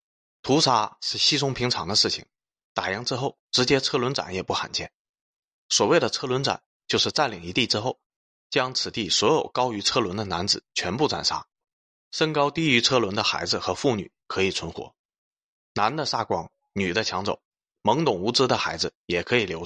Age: 20-39